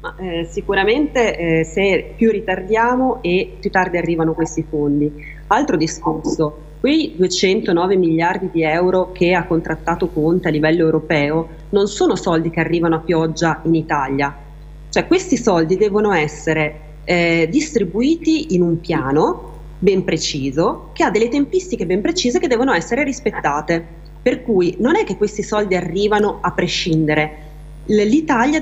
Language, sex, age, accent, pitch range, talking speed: Italian, female, 30-49, native, 160-225 Hz, 145 wpm